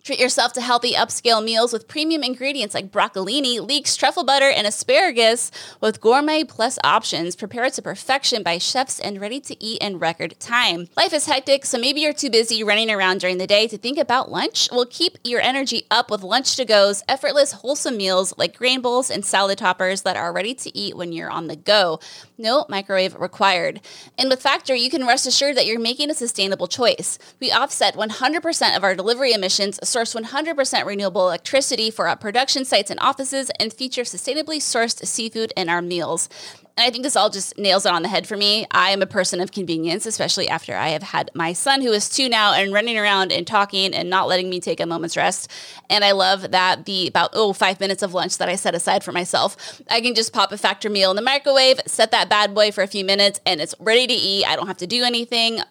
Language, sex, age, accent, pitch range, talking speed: English, female, 20-39, American, 190-255 Hz, 220 wpm